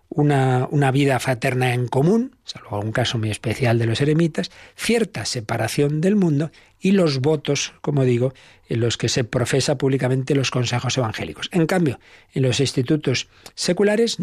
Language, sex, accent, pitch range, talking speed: Spanish, male, Spanish, 120-150 Hz, 160 wpm